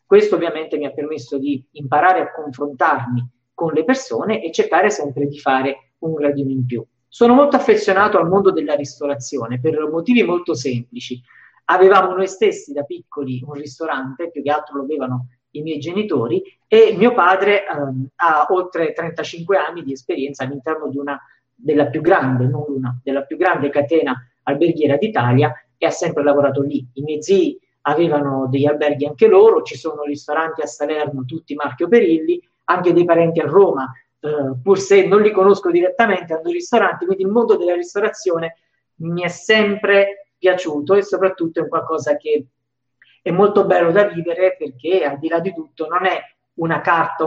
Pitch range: 140-185 Hz